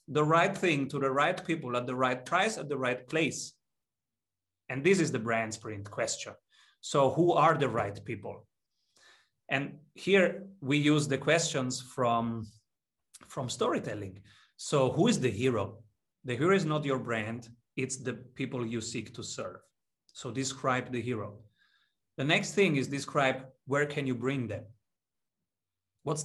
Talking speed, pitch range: 160 wpm, 125-160 Hz